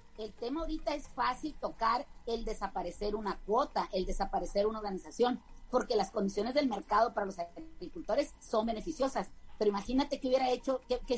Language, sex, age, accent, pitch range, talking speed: Spanish, female, 40-59, Mexican, 200-265 Hz, 160 wpm